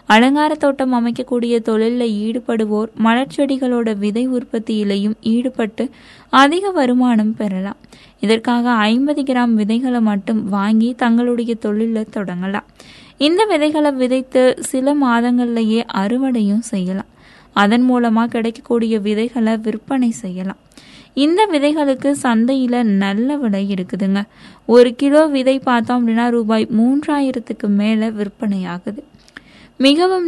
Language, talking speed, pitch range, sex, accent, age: Tamil, 100 wpm, 220-265 Hz, female, native, 20-39